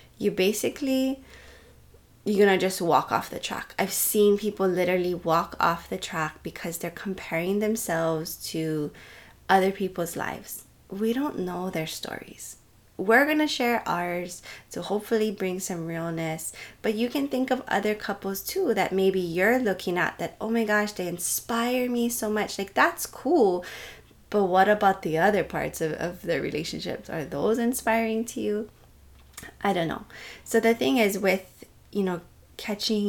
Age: 20-39